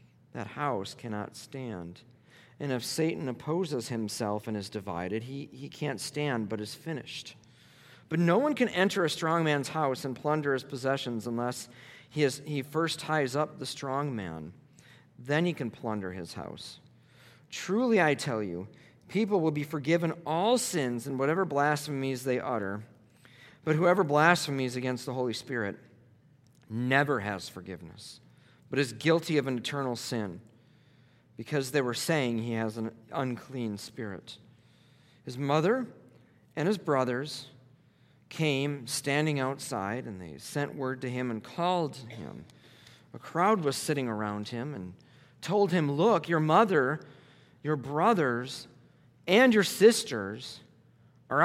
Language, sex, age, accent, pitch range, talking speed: English, male, 40-59, American, 120-155 Hz, 145 wpm